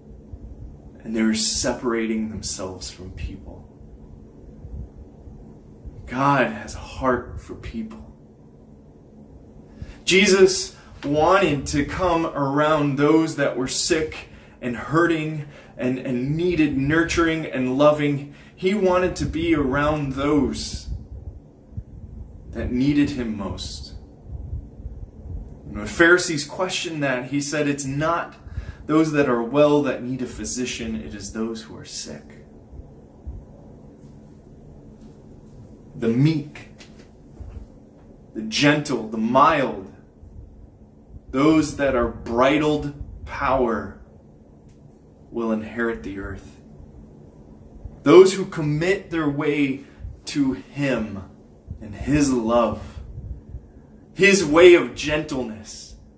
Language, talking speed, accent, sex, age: English, 95 wpm, American, male, 20-39